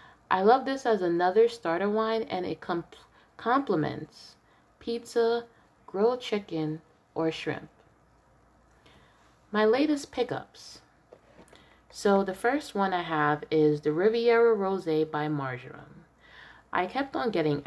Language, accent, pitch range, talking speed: English, American, 155-215 Hz, 115 wpm